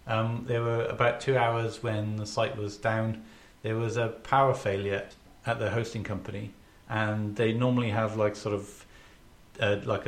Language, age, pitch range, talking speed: English, 30-49, 100-115 Hz, 165 wpm